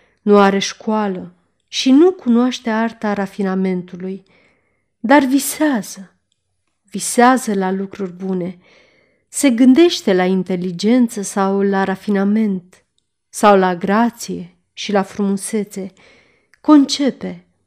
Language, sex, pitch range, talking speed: Romanian, female, 195-240 Hz, 95 wpm